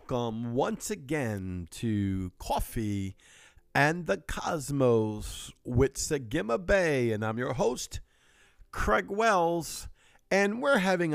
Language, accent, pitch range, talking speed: English, American, 115-165 Hz, 110 wpm